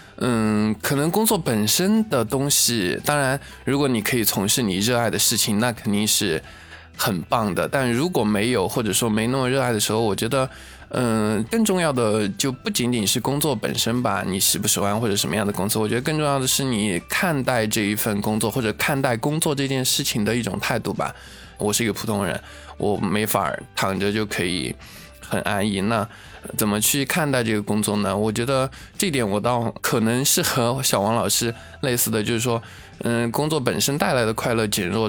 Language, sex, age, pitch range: Chinese, male, 20-39, 105-125 Hz